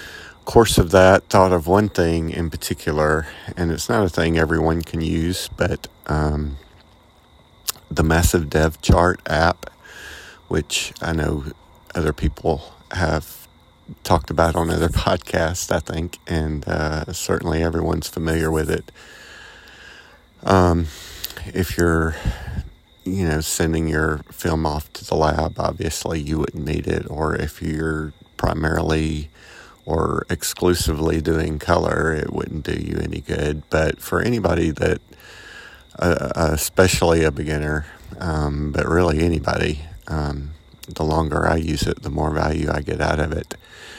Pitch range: 75-85 Hz